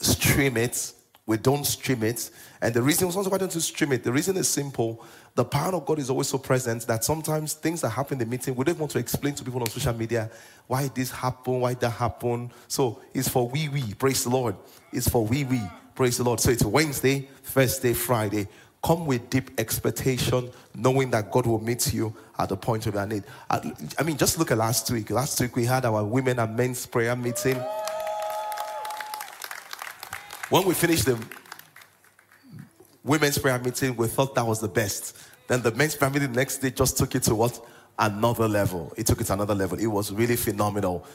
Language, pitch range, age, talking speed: English, 115-135 Hz, 30-49, 210 wpm